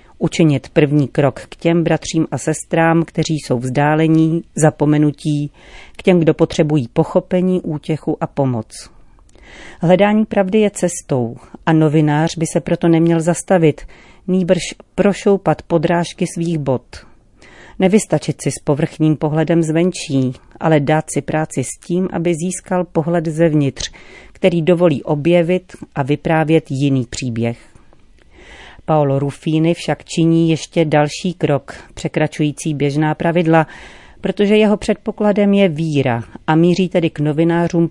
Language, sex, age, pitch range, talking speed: Czech, female, 40-59, 150-175 Hz, 125 wpm